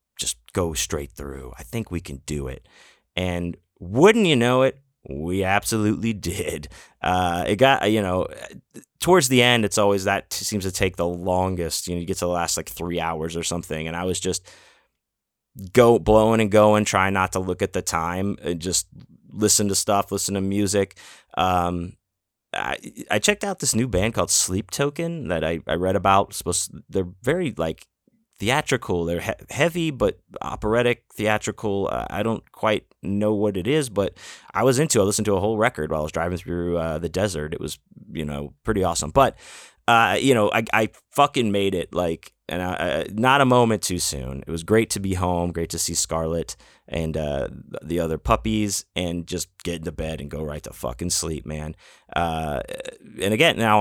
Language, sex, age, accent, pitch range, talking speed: English, male, 30-49, American, 85-110 Hz, 200 wpm